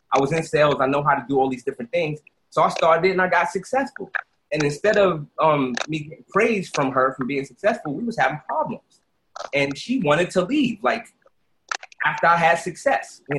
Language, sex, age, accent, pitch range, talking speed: English, male, 30-49, American, 135-180 Hz, 210 wpm